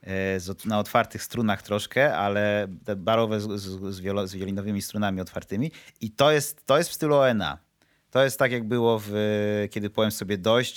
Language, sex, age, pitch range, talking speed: Polish, male, 30-49, 95-125 Hz, 150 wpm